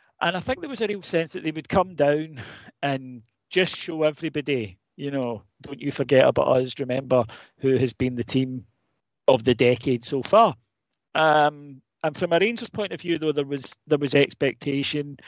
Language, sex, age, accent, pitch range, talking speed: English, male, 30-49, British, 125-155 Hz, 195 wpm